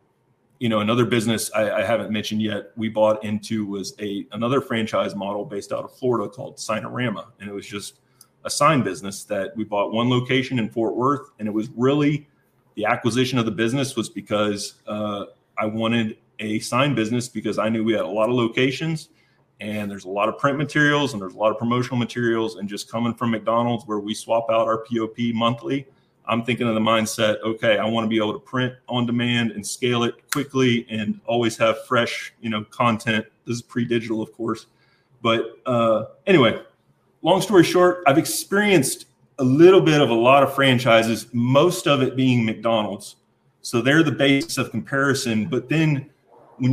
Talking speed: 195 wpm